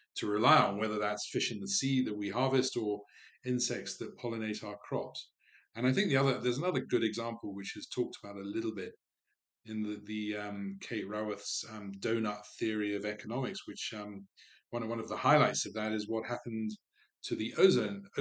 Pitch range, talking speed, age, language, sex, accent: 105-120 Hz, 200 wpm, 40-59, English, male, British